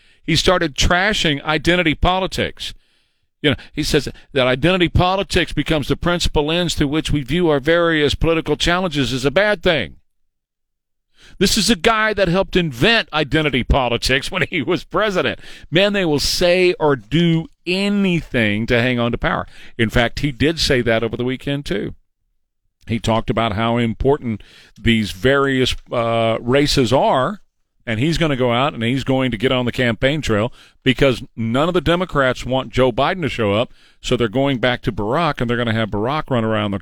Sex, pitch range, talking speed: male, 115-170 Hz, 185 wpm